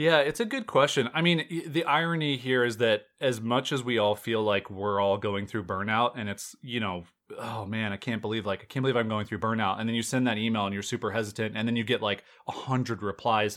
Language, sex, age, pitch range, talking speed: English, male, 30-49, 115-150 Hz, 260 wpm